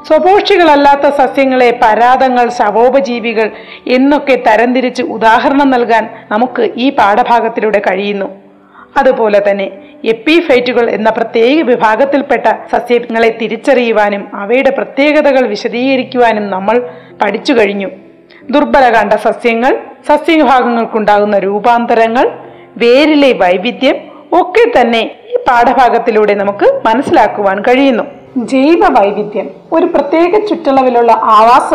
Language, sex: Malayalam, female